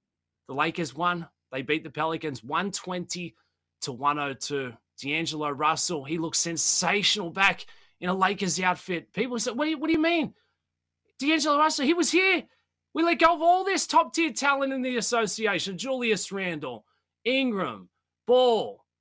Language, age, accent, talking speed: English, 20-39, Australian, 150 wpm